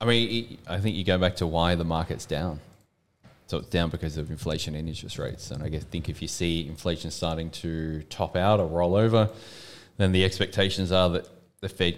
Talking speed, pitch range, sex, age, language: 220 wpm, 85-105 Hz, male, 20-39, English